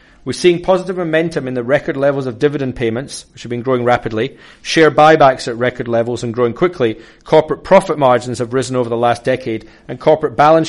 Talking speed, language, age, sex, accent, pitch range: 200 wpm, English, 30-49, male, British, 125-150 Hz